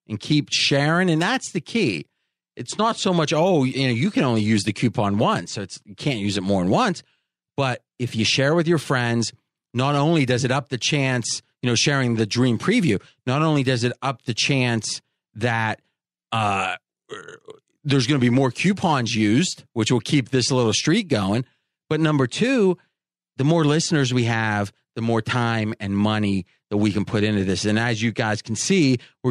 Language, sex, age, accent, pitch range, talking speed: English, male, 30-49, American, 115-150 Hz, 200 wpm